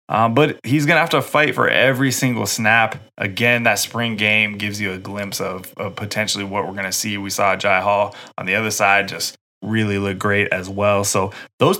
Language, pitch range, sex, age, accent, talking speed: English, 100-115 Hz, male, 20-39, American, 225 wpm